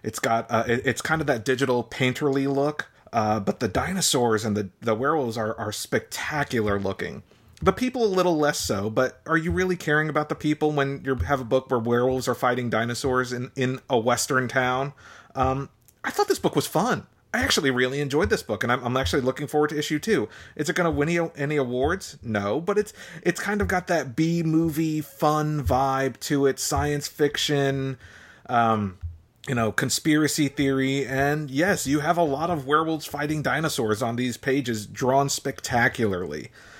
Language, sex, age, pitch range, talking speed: English, male, 30-49, 115-150 Hz, 190 wpm